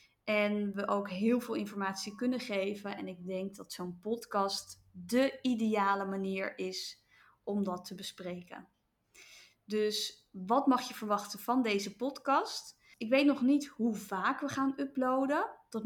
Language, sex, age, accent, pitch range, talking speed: Dutch, female, 20-39, Dutch, 200-240 Hz, 150 wpm